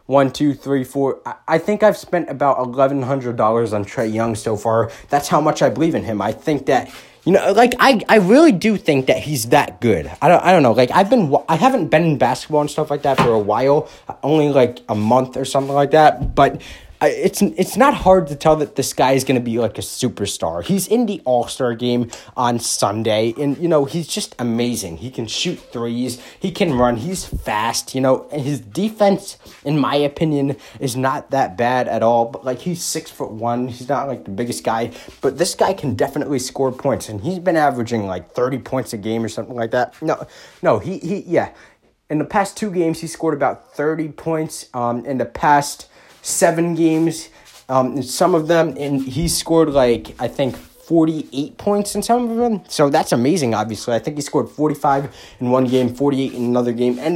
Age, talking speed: 20-39, 215 wpm